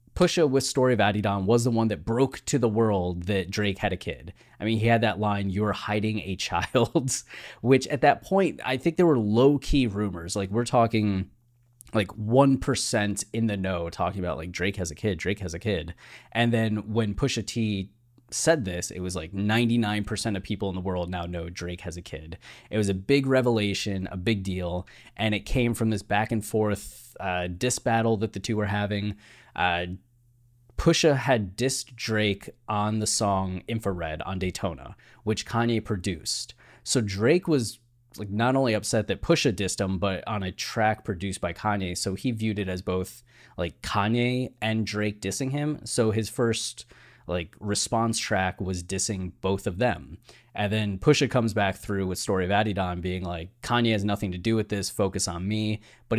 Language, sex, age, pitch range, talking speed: English, male, 20-39, 95-120 Hz, 195 wpm